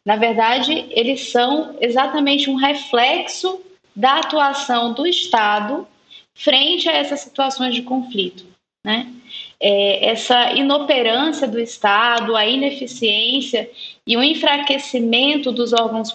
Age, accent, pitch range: 10-29, Brazilian, 225-270 Hz